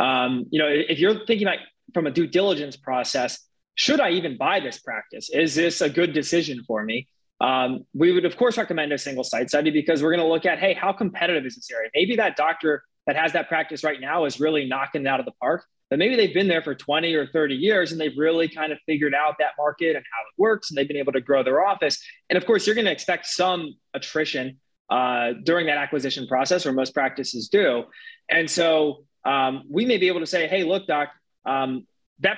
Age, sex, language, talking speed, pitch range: 20-39, male, English, 235 wpm, 145-185 Hz